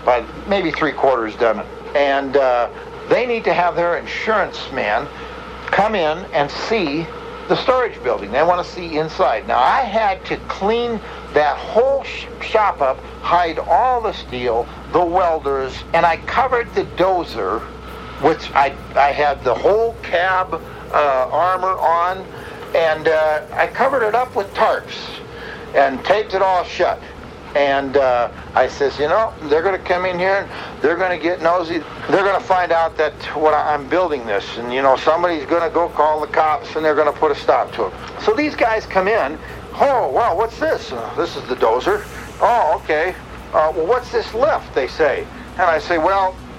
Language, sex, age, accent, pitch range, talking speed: English, male, 60-79, American, 150-215 Hz, 185 wpm